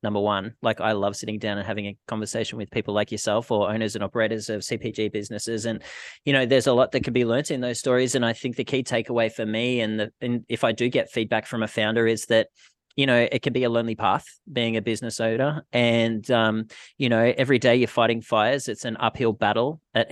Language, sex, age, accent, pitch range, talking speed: English, male, 20-39, Australian, 110-120 Hz, 245 wpm